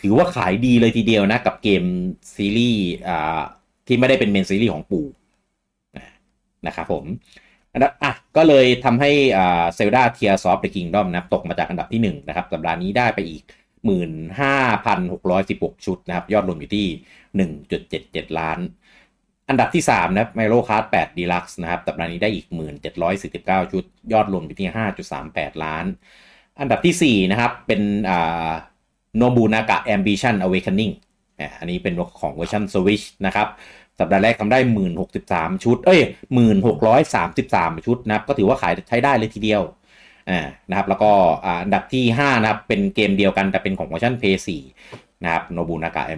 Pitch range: 90-120 Hz